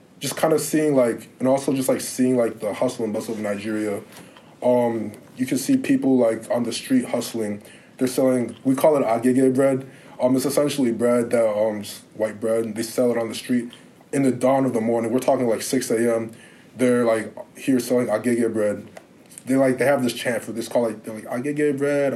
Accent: American